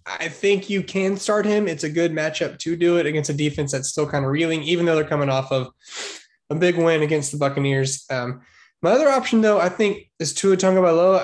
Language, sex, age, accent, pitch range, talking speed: English, male, 10-29, American, 135-190 Hz, 230 wpm